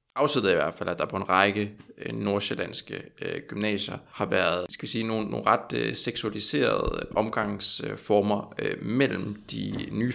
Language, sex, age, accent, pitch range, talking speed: Danish, male, 20-39, native, 95-115 Hz, 160 wpm